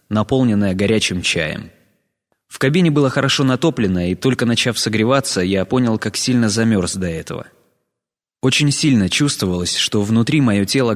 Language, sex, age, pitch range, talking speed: Russian, male, 20-39, 105-130 Hz, 140 wpm